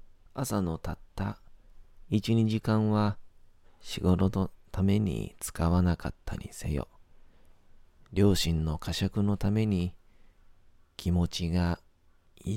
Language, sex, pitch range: Japanese, male, 85-100 Hz